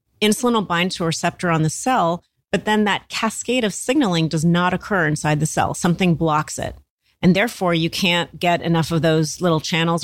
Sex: female